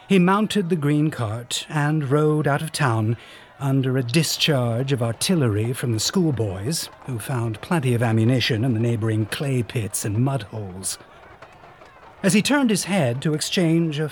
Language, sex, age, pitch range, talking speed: English, male, 60-79, 120-165 Hz, 165 wpm